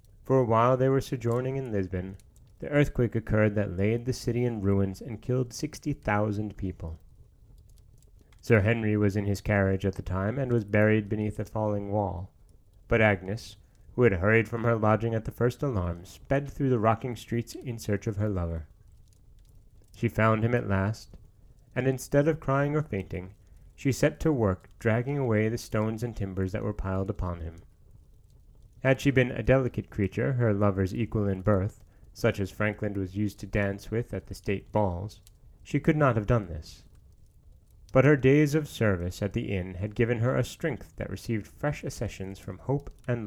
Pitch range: 100-125 Hz